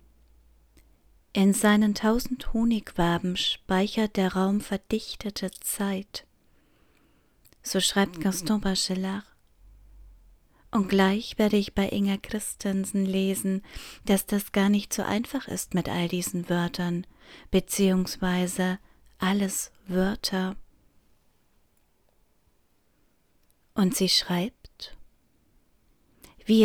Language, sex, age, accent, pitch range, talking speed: German, female, 30-49, German, 180-210 Hz, 90 wpm